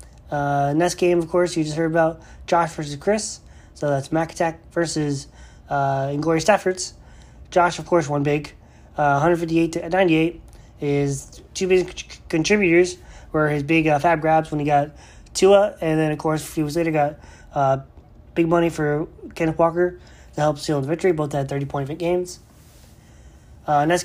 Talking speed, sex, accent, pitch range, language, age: 175 wpm, male, American, 145-175 Hz, English, 20-39